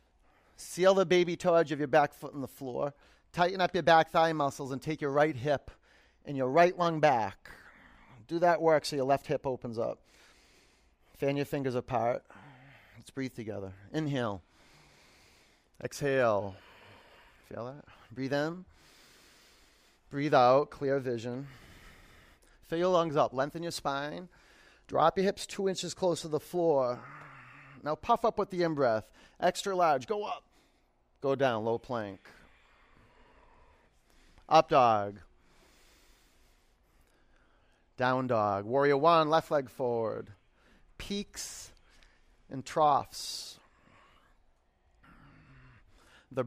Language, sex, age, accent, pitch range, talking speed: English, male, 30-49, American, 120-165 Hz, 125 wpm